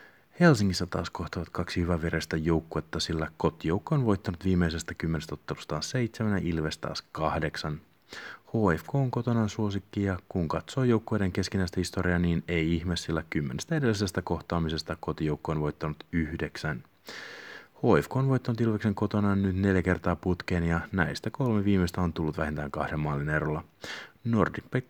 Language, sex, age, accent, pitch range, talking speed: Finnish, male, 30-49, native, 80-100 Hz, 140 wpm